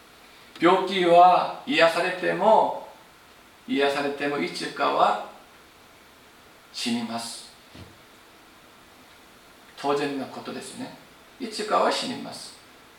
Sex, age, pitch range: male, 50-69, 175-240 Hz